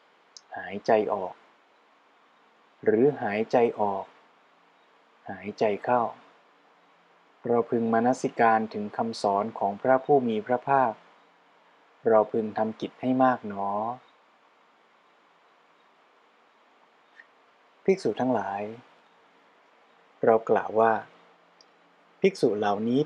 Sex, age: male, 20-39